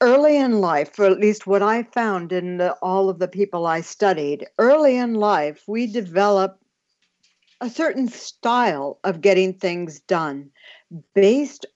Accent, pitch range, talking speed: American, 180-230 Hz, 150 wpm